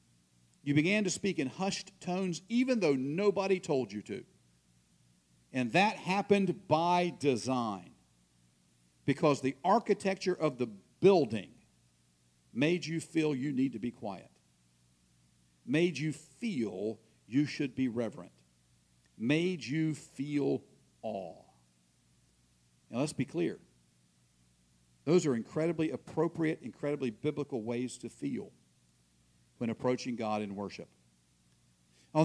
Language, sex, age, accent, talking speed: English, male, 50-69, American, 115 wpm